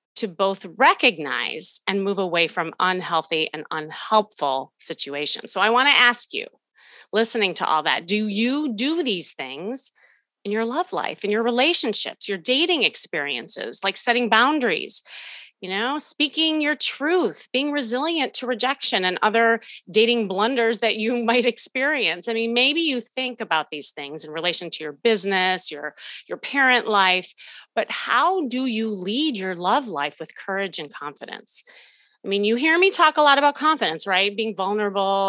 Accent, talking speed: American, 165 wpm